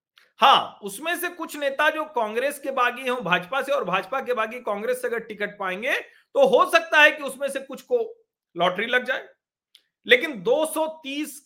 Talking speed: 185 wpm